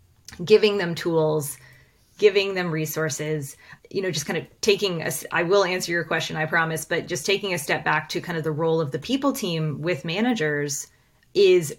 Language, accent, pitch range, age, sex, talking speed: English, American, 160-205 Hz, 20-39, female, 195 wpm